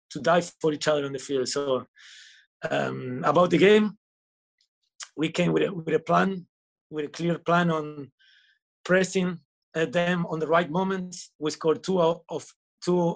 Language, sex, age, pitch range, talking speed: English, male, 30-49, 150-175 Hz, 170 wpm